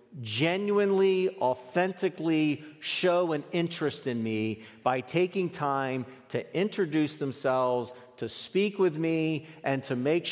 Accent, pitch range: American, 130-190 Hz